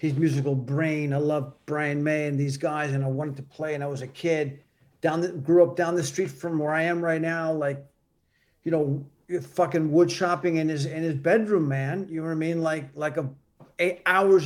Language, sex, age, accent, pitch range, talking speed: English, male, 40-59, American, 145-175 Hz, 230 wpm